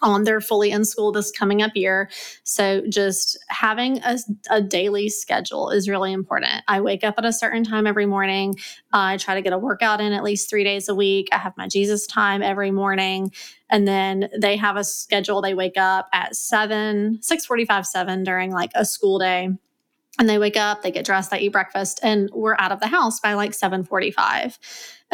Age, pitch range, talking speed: 20-39, 200-230 Hz, 210 wpm